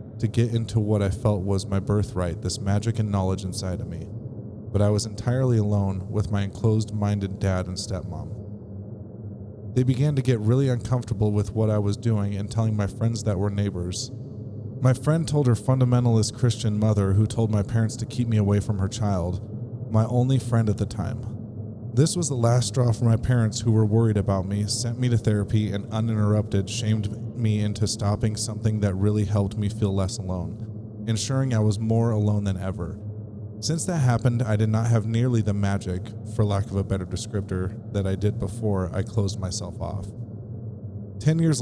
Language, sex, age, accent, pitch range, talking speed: English, male, 30-49, American, 100-115 Hz, 190 wpm